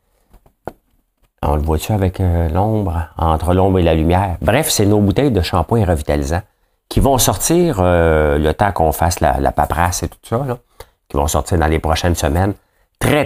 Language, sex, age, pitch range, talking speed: English, male, 50-69, 80-95 Hz, 180 wpm